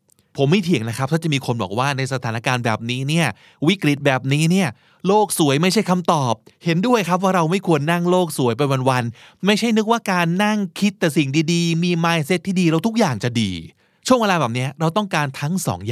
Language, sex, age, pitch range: Thai, male, 20-39, 120-170 Hz